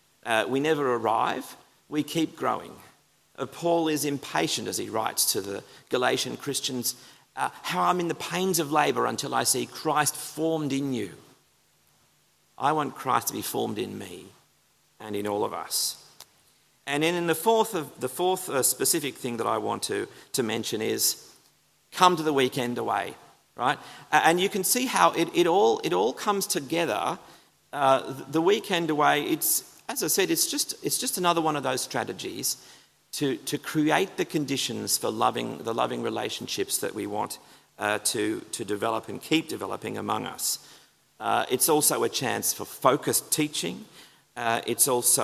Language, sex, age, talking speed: English, male, 40-59, 175 wpm